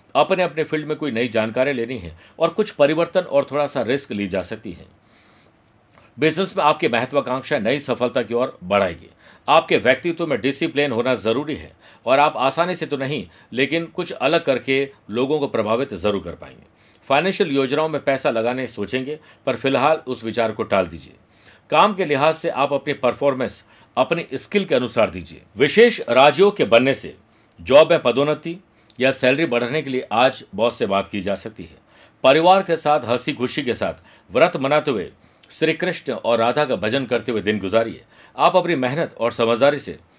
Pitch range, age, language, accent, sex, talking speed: 115-150 Hz, 50-69, Hindi, native, male, 185 wpm